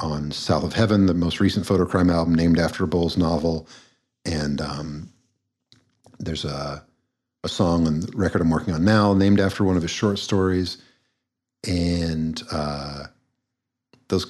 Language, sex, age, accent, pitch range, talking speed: English, male, 50-69, American, 80-125 Hz, 155 wpm